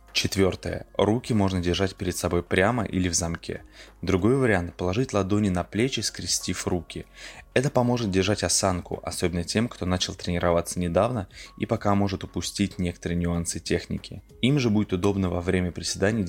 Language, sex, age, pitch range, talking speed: Russian, male, 20-39, 90-100 Hz, 160 wpm